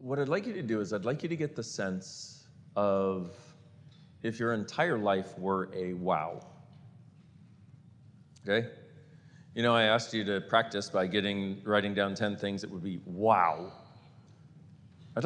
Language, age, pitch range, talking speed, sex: English, 40-59, 105-145 Hz, 160 wpm, male